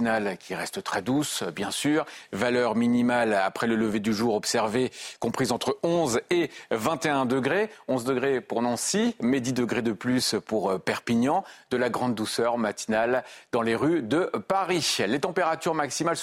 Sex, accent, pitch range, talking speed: male, French, 120-160 Hz, 165 wpm